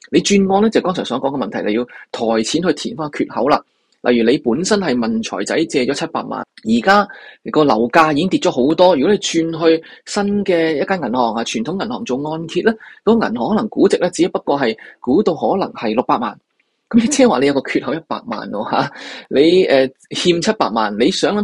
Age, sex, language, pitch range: 20-39, male, Chinese, 130-205 Hz